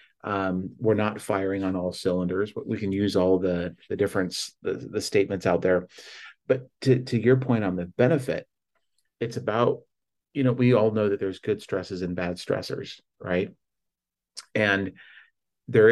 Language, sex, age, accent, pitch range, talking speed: English, male, 40-59, American, 95-115 Hz, 170 wpm